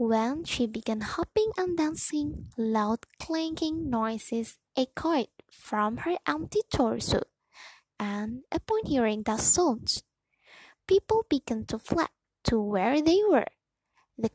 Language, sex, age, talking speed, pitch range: Indonesian, female, 10-29, 115 wpm, 220-310 Hz